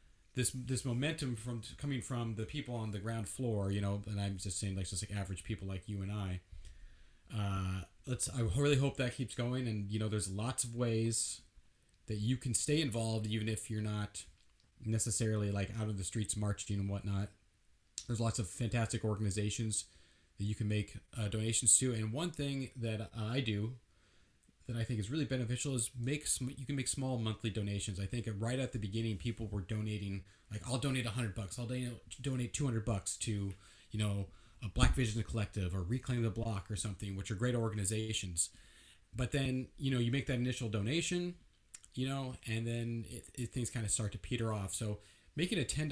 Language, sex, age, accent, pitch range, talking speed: English, male, 30-49, American, 100-125 Hz, 200 wpm